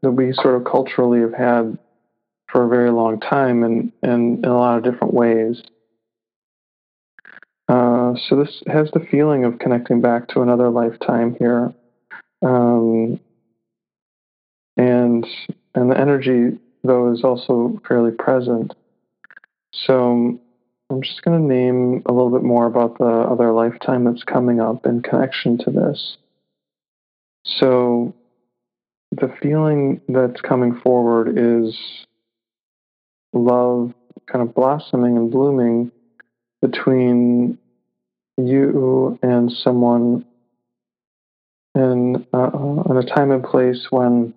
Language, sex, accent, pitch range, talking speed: English, male, American, 120-130 Hz, 120 wpm